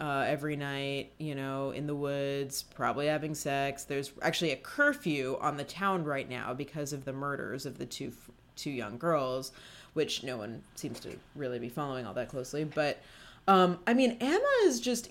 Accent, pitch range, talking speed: American, 140-175 Hz, 190 wpm